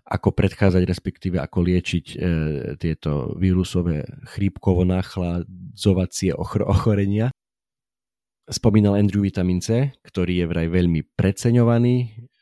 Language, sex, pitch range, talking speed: Slovak, male, 85-95 Hz, 95 wpm